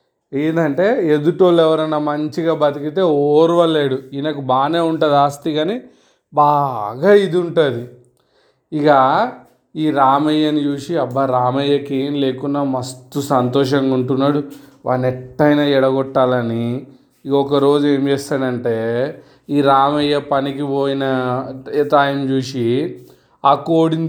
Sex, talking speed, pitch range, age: male, 95 wpm, 140-170 Hz, 30-49